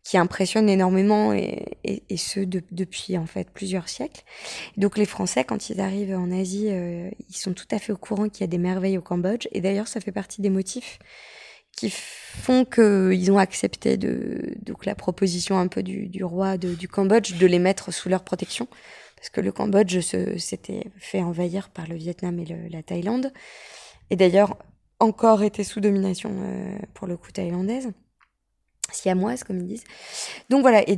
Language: French